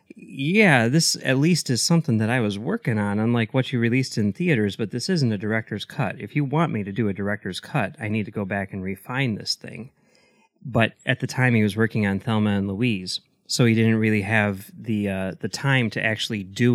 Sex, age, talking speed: male, 30-49, 225 wpm